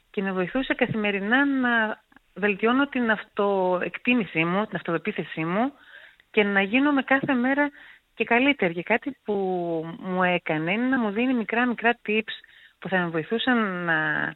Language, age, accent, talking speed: Greek, 30-49, native, 145 wpm